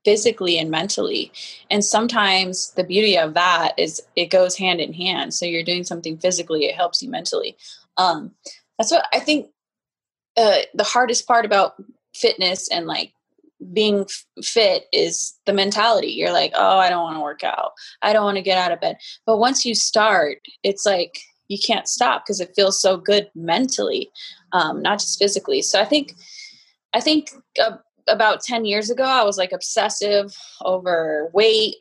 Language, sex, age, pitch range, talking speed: English, female, 20-39, 180-225 Hz, 180 wpm